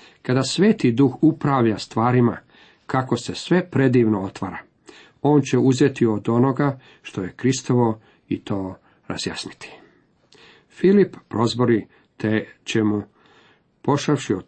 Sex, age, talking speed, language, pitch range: male, 50-69, 110 wpm, Croatian, 110-140 Hz